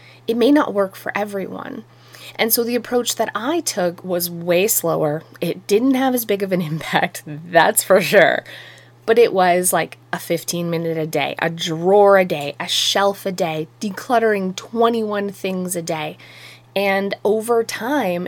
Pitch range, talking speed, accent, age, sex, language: 180-235 Hz, 170 wpm, American, 20-39, female, English